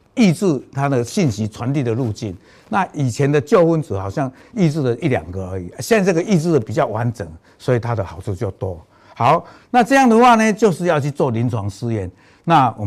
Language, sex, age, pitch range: Chinese, male, 60-79, 105-150 Hz